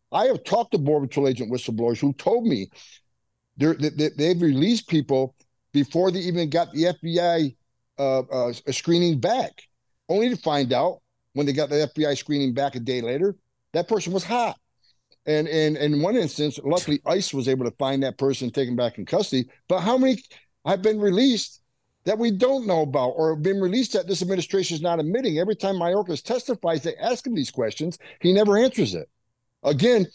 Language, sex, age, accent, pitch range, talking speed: English, male, 60-79, American, 135-195 Hz, 200 wpm